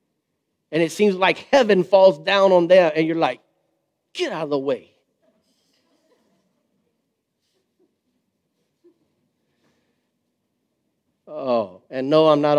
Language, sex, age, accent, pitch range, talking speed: English, male, 40-59, American, 155-225 Hz, 105 wpm